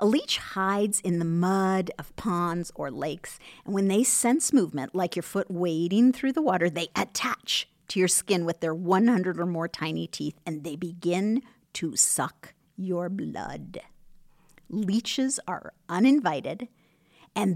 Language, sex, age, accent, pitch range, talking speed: English, female, 50-69, American, 175-225 Hz, 155 wpm